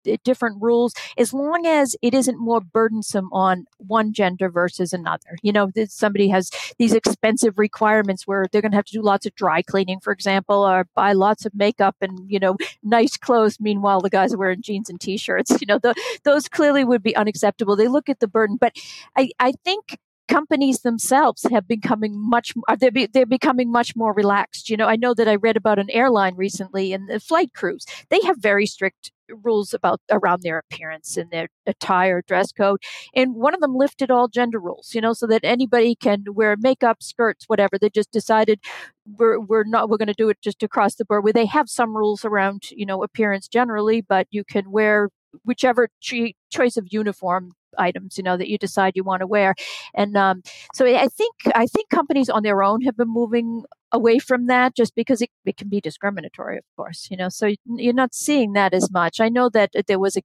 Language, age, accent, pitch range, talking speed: English, 50-69, American, 195-240 Hz, 210 wpm